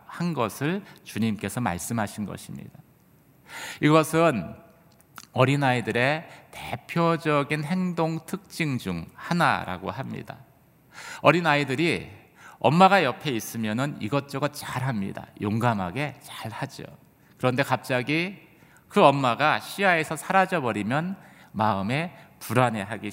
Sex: male